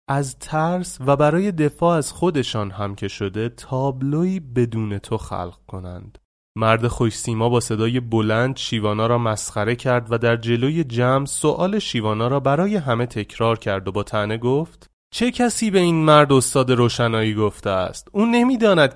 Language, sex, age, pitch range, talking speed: Persian, male, 30-49, 115-160 Hz, 165 wpm